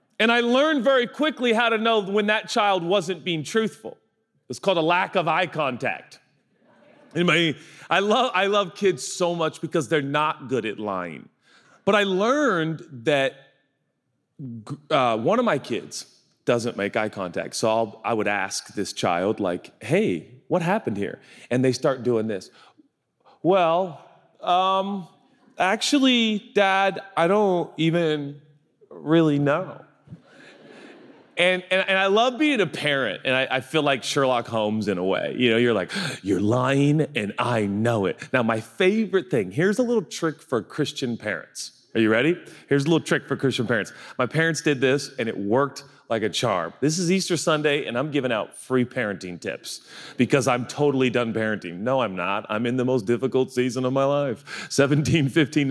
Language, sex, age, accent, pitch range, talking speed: English, male, 30-49, American, 125-185 Hz, 170 wpm